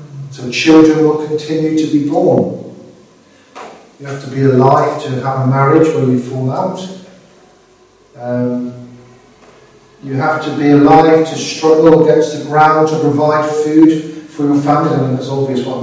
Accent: British